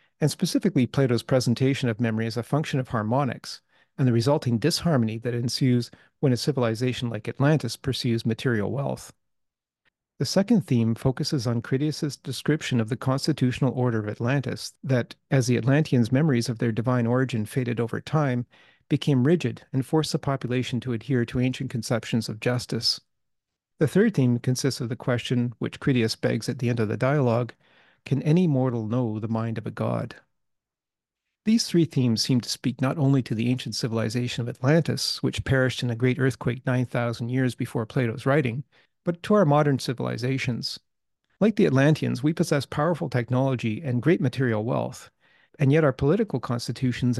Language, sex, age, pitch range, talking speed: English, male, 40-59, 120-145 Hz, 170 wpm